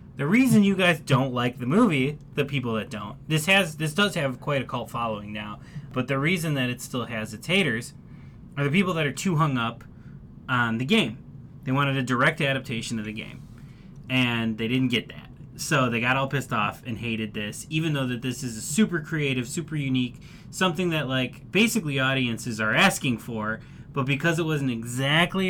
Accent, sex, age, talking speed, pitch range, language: American, male, 20-39, 205 wpm, 125-155 Hz, English